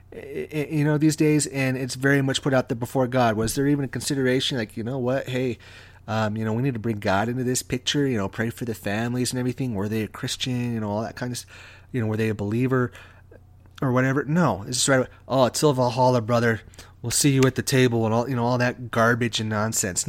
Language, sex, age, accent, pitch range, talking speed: English, male, 30-49, American, 100-145 Hz, 255 wpm